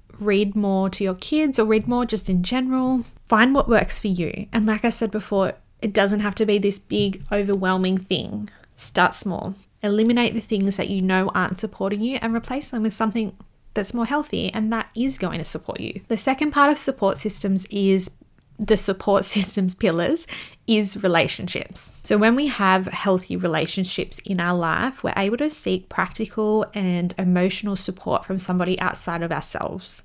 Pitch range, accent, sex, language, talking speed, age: 185-225 Hz, Australian, female, English, 180 wpm, 20-39